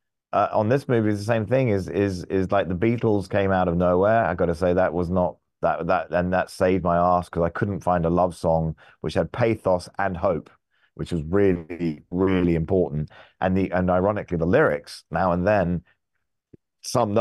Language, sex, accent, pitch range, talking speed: English, male, British, 90-105 Hz, 200 wpm